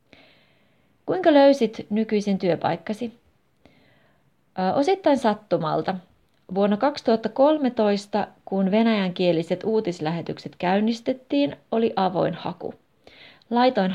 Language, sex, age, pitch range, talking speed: Finnish, female, 30-49, 175-230 Hz, 70 wpm